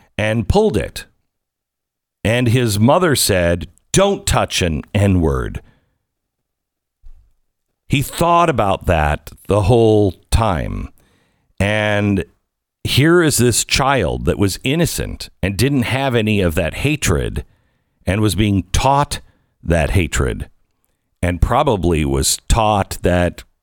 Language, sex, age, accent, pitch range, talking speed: English, male, 50-69, American, 85-110 Hz, 110 wpm